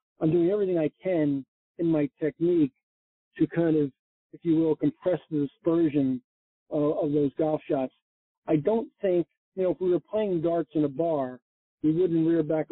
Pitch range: 145-165 Hz